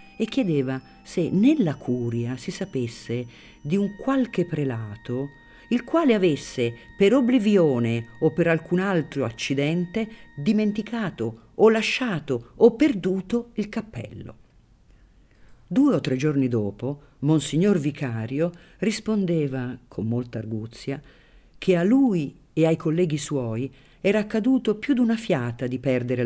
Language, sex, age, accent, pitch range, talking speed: Italian, female, 50-69, native, 120-175 Hz, 125 wpm